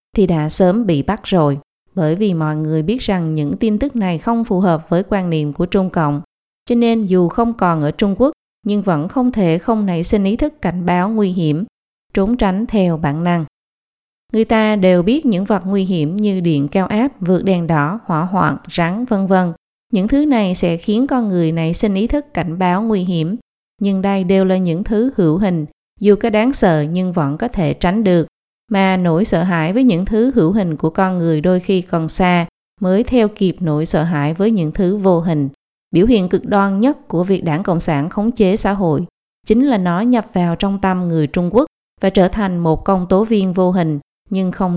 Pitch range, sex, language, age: 165-215 Hz, female, Vietnamese, 20-39